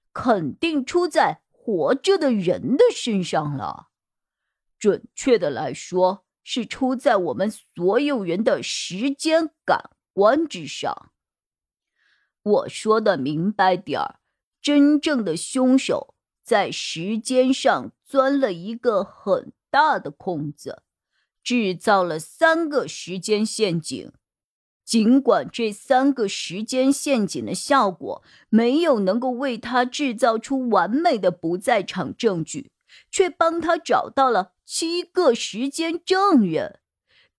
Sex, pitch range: female, 195-280 Hz